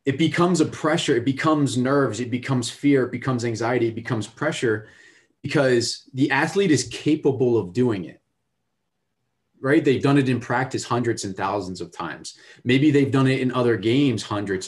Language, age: English, 30-49